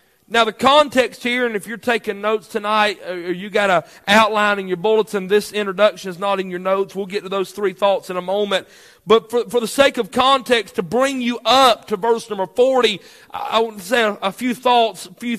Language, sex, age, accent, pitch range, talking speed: English, male, 40-59, American, 210-255 Hz, 230 wpm